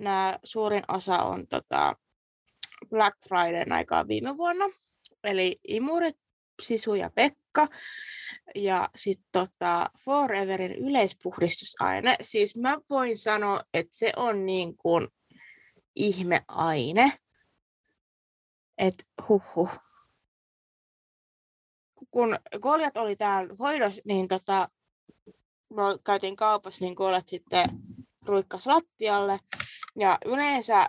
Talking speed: 95 wpm